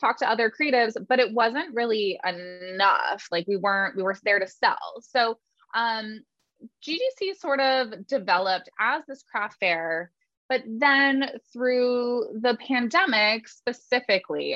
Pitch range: 185-255 Hz